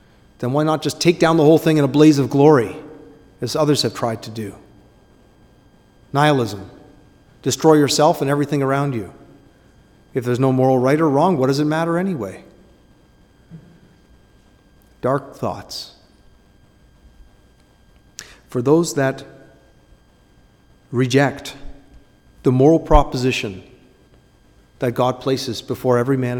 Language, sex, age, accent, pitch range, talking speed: English, male, 40-59, American, 125-160 Hz, 125 wpm